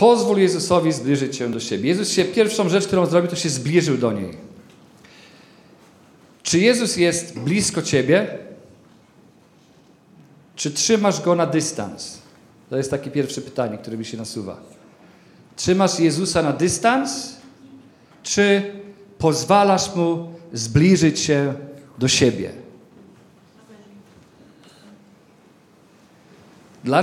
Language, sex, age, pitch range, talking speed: Polish, male, 40-59, 140-180 Hz, 105 wpm